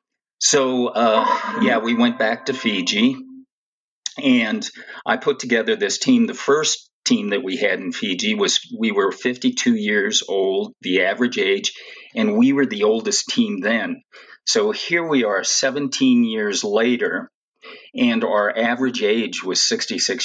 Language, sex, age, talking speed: English, male, 40-59, 150 wpm